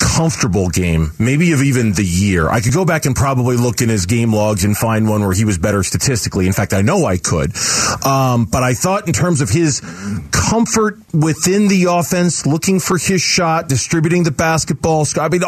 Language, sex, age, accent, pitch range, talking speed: English, male, 40-59, American, 115-170 Hz, 210 wpm